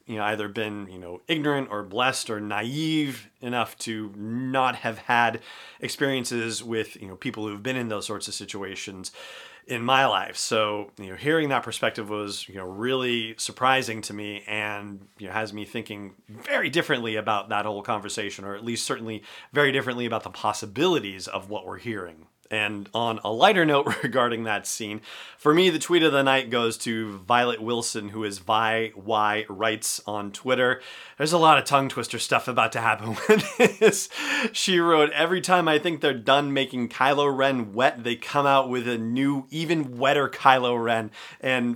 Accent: American